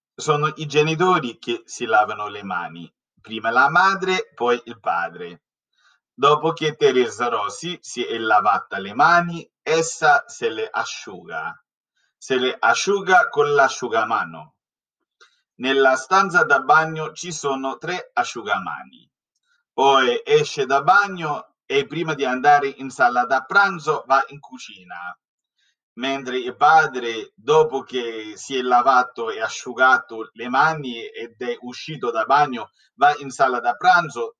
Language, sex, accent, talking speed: Italian, male, native, 135 wpm